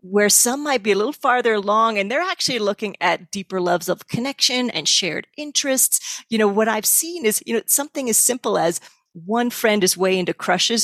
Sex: female